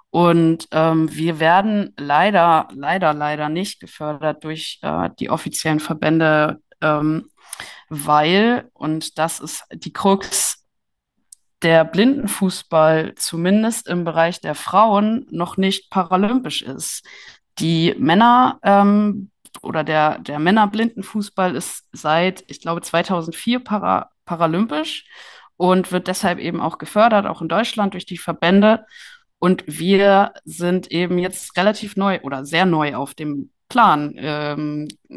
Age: 20-39